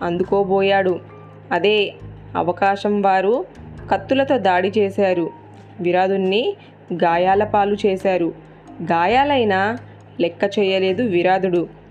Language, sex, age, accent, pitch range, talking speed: Telugu, female, 20-39, native, 175-215 Hz, 75 wpm